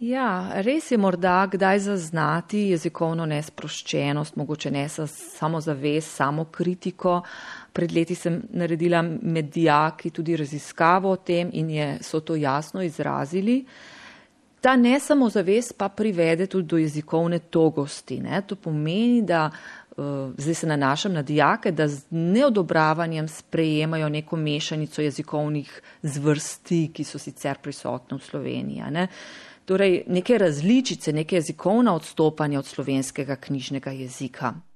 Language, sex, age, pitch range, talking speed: Italian, female, 30-49, 155-205 Hz, 120 wpm